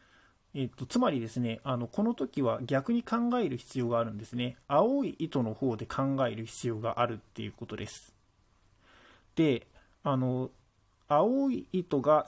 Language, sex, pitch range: Japanese, male, 115-165 Hz